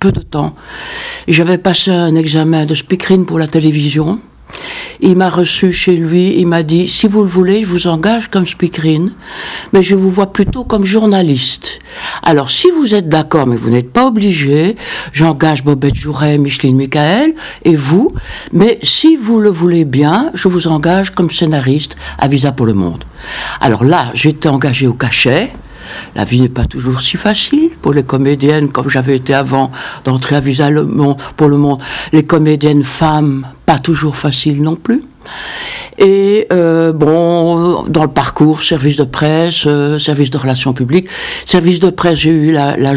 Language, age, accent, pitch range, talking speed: French, 60-79, French, 145-185 Hz, 180 wpm